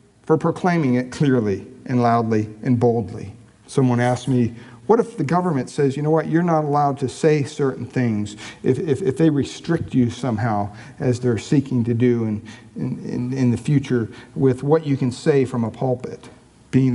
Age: 50-69